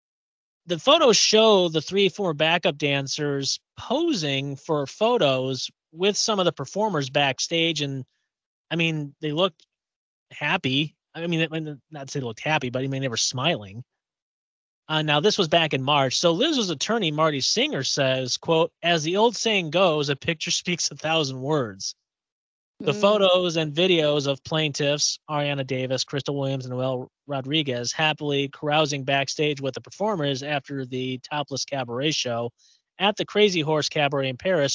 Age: 30-49